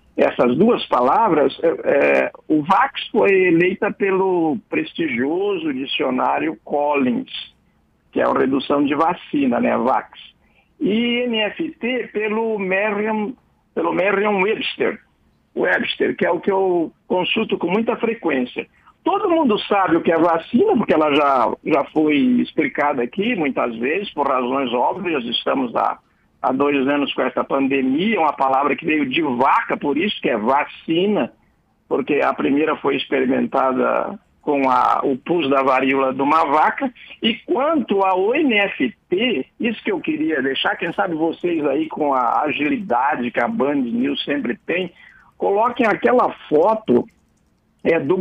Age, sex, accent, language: 60-79, male, Brazilian, Portuguese